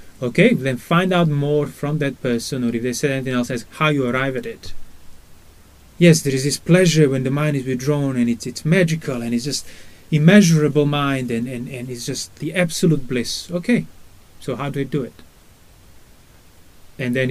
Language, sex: English, male